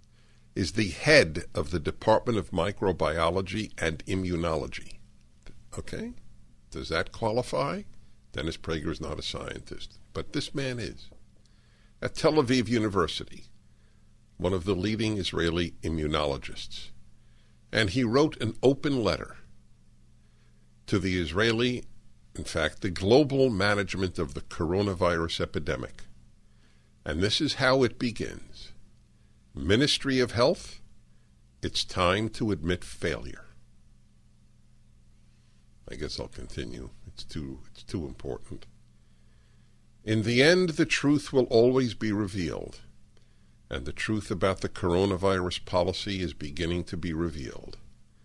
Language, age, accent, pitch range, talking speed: English, 60-79, American, 85-110 Hz, 120 wpm